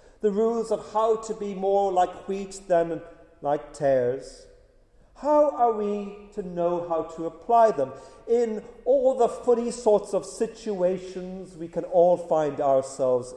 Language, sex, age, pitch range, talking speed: English, male, 50-69, 155-205 Hz, 150 wpm